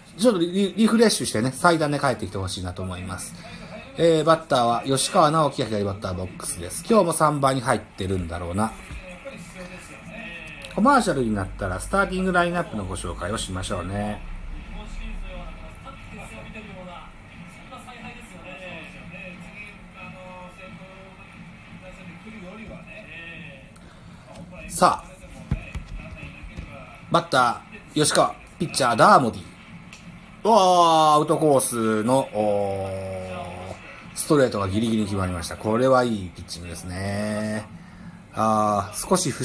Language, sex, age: Japanese, male, 40-59